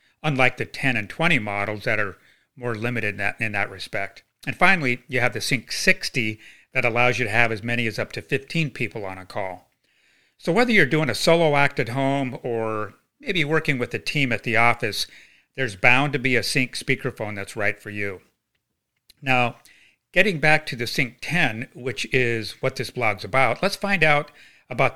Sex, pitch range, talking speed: male, 115-150 Hz, 195 wpm